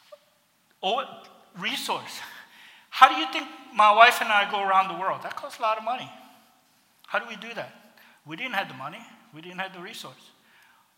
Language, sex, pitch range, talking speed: English, male, 180-235 Hz, 190 wpm